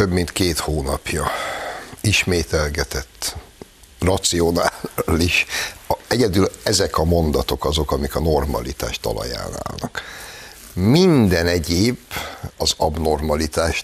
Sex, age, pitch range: male, 60-79, 75-100 Hz